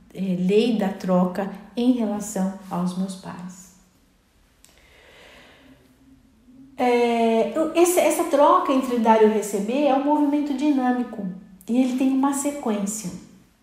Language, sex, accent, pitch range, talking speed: Portuguese, female, Brazilian, 200-275 Hz, 100 wpm